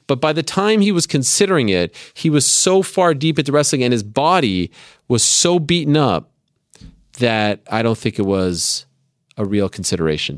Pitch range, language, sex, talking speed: 95-135 Hz, English, male, 180 wpm